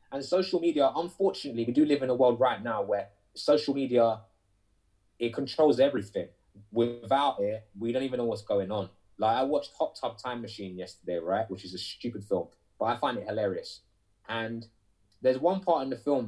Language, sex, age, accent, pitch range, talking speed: English, male, 20-39, British, 100-145 Hz, 195 wpm